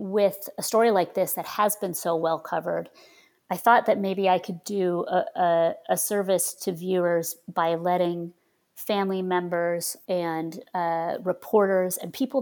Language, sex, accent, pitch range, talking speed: English, female, American, 170-205 Hz, 155 wpm